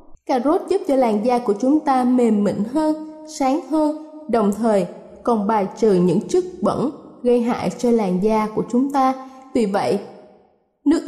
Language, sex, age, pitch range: Thai, female, 10-29, 235-295 Hz